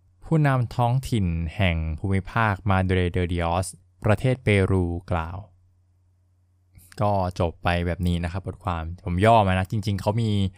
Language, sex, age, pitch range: Thai, male, 20-39, 90-110 Hz